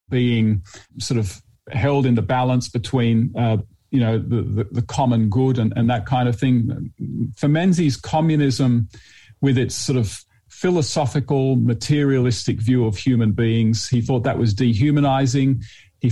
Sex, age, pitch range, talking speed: male, 40-59, 115-130 Hz, 155 wpm